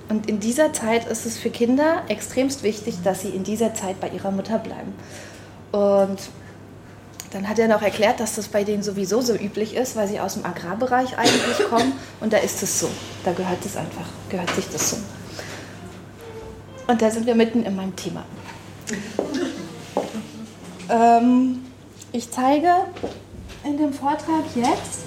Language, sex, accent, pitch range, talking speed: German, female, German, 195-245 Hz, 165 wpm